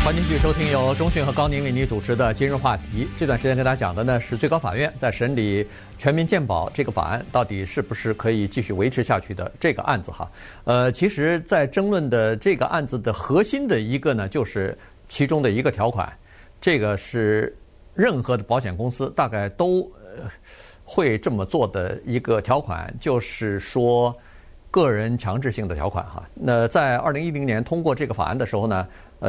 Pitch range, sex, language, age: 100-140 Hz, male, Chinese, 50-69